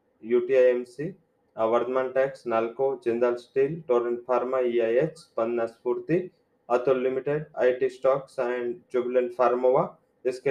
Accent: Indian